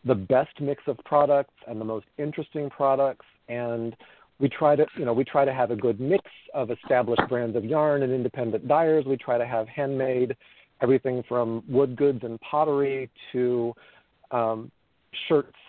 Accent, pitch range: American, 125-150 Hz